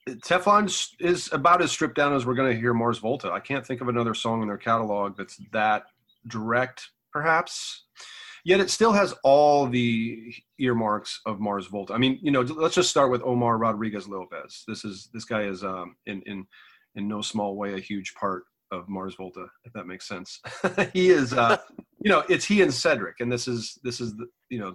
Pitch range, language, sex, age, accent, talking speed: 100-125 Hz, English, male, 30-49, American, 205 wpm